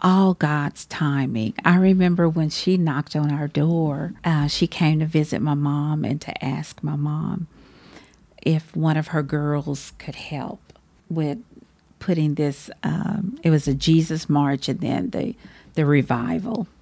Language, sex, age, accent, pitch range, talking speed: English, female, 50-69, American, 150-190 Hz, 155 wpm